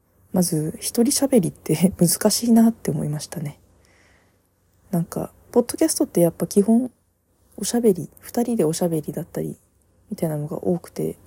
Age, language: 20-39, Japanese